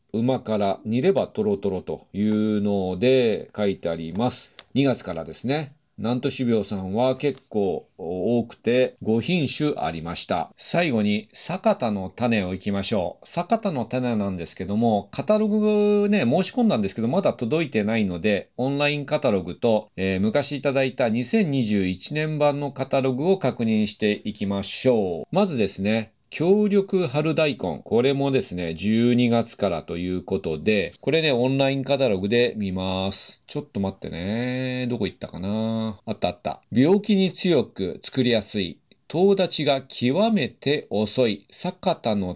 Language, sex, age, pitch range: Japanese, male, 40-59, 100-145 Hz